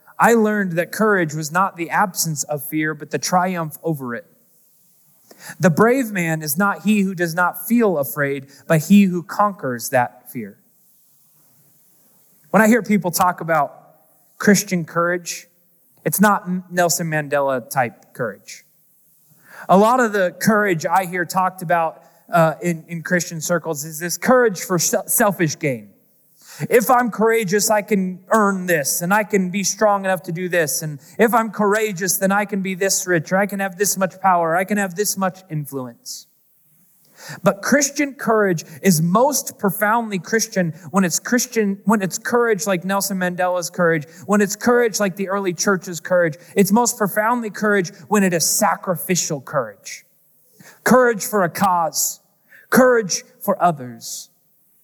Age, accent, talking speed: 20-39, American, 160 wpm